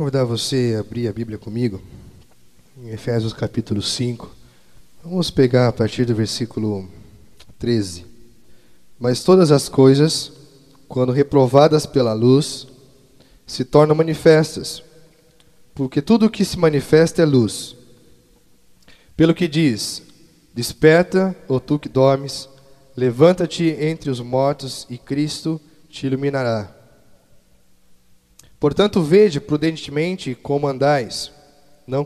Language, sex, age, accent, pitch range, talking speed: Portuguese, male, 10-29, Brazilian, 120-160 Hz, 110 wpm